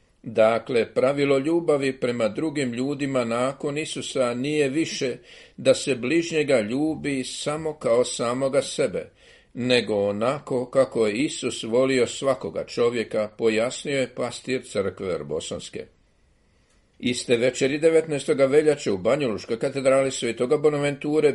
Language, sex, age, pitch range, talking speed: Croatian, male, 50-69, 125-150 Hz, 110 wpm